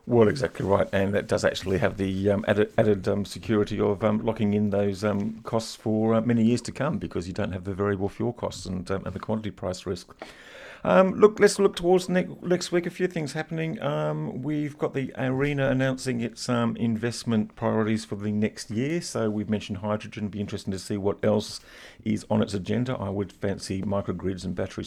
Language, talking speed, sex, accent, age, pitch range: English, 210 wpm, male, British, 40-59, 100-125 Hz